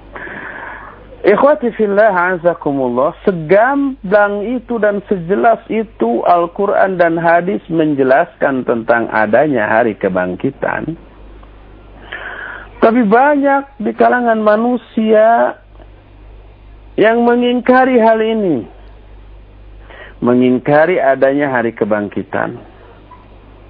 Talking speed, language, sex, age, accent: 75 wpm, Indonesian, male, 50-69, native